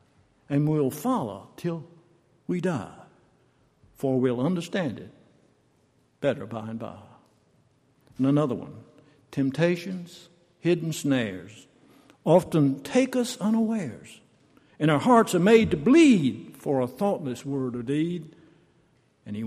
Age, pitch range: 60-79, 125-165 Hz